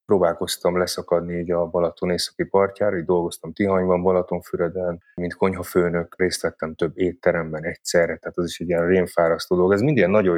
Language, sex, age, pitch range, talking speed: Hungarian, male, 30-49, 85-100 Hz, 170 wpm